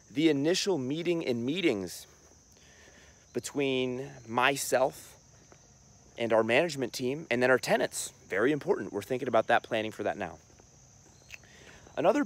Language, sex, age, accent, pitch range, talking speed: English, male, 30-49, American, 100-125 Hz, 125 wpm